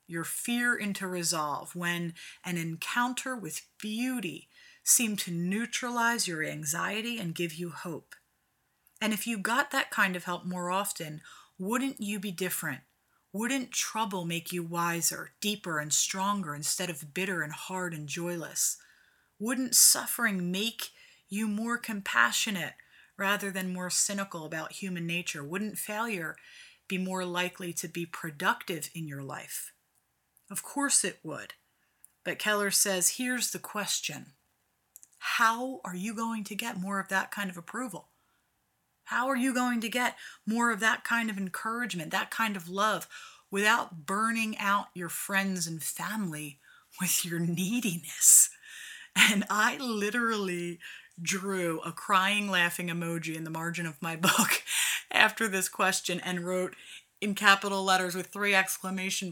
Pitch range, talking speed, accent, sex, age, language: 175-225 Hz, 145 wpm, American, female, 30-49, English